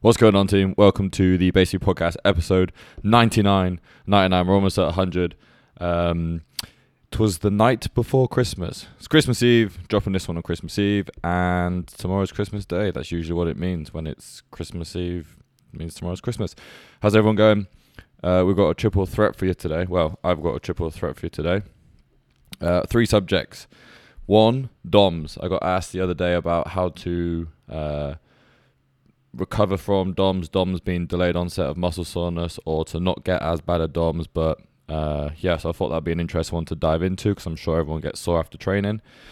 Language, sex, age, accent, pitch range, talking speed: English, male, 20-39, British, 85-100 Hz, 190 wpm